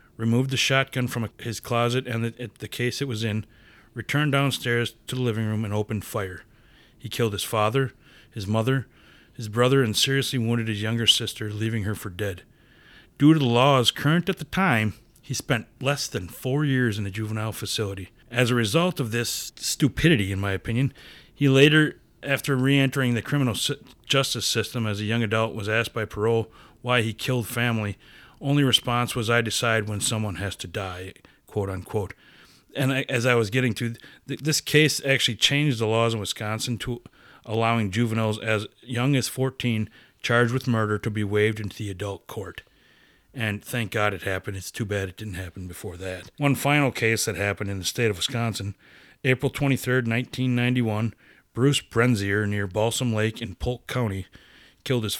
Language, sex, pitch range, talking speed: English, male, 105-130 Hz, 180 wpm